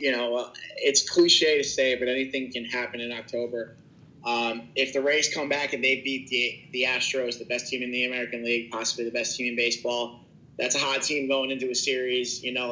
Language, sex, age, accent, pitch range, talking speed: English, male, 30-49, American, 125-155 Hz, 220 wpm